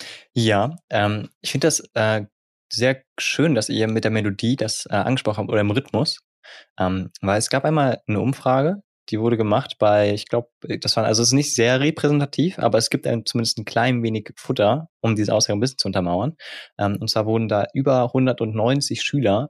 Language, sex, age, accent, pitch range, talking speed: German, male, 20-39, German, 100-125 Hz, 200 wpm